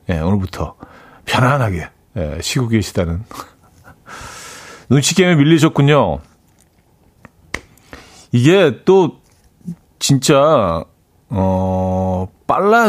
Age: 40-59